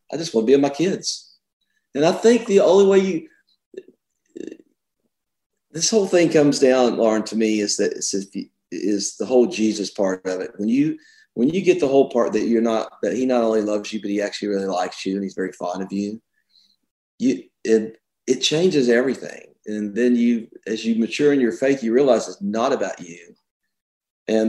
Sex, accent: male, American